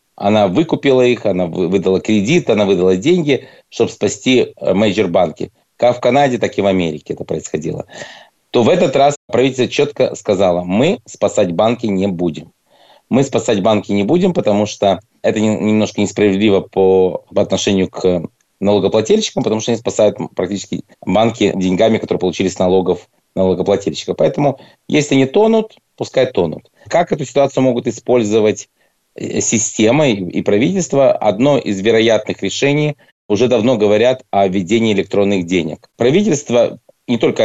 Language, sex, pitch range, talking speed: Russian, male, 95-125 Hz, 140 wpm